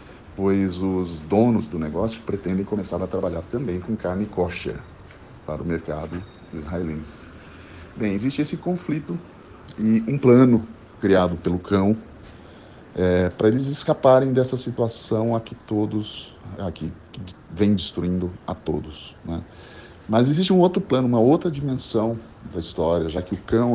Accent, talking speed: Brazilian, 140 wpm